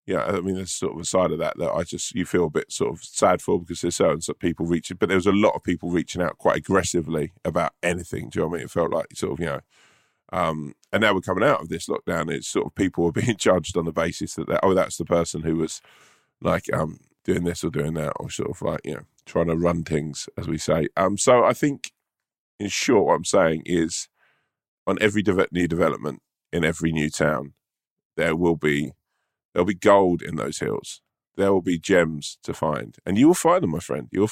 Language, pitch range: English, 80-90 Hz